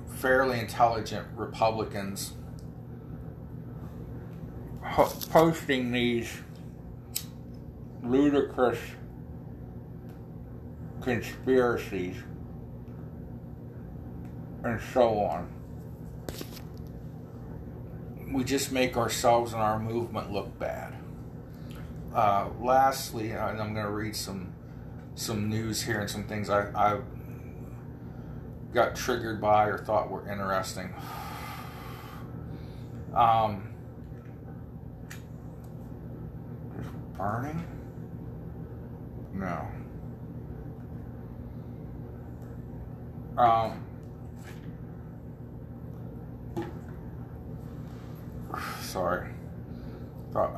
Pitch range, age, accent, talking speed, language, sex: 90-120 Hz, 50-69, American, 55 wpm, English, male